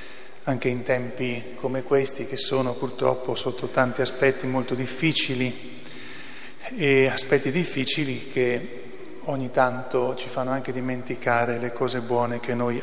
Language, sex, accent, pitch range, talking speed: Italian, male, native, 125-140 Hz, 130 wpm